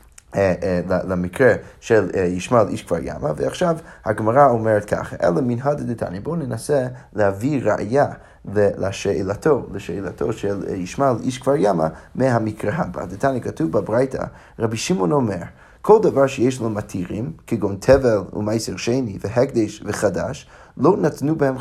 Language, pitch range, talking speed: Hebrew, 100-130 Hz, 135 wpm